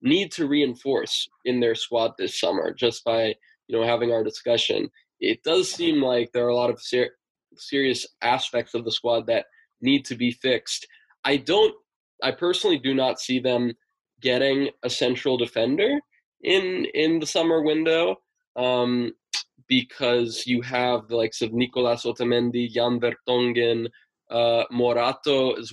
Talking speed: 155 wpm